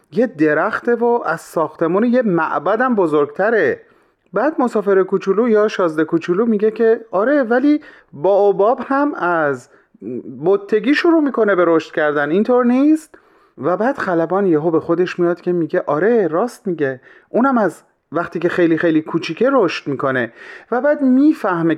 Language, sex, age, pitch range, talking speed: Persian, male, 30-49, 150-210 Hz, 155 wpm